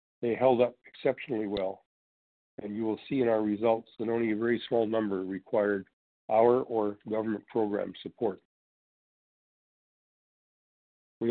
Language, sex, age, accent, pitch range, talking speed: English, male, 50-69, American, 105-125 Hz, 135 wpm